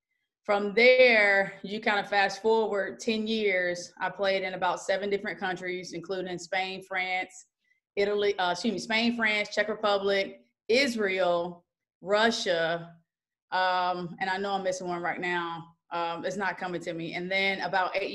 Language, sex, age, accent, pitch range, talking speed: English, female, 20-39, American, 175-205 Hz, 160 wpm